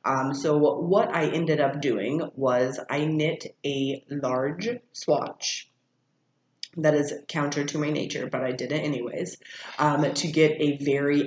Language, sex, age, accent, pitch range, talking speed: English, female, 30-49, American, 130-155 Hz, 155 wpm